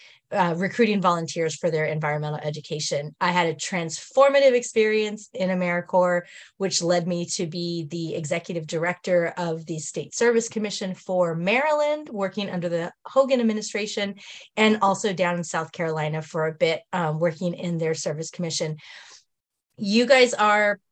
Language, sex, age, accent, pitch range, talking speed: English, female, 30-49, American, 165-205 Hz, 145 wpm